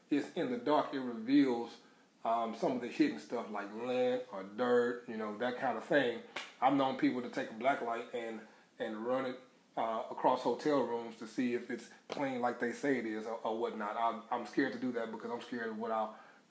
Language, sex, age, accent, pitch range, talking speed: English, male, 30-49, American, 120-145 Hz, 230 wpm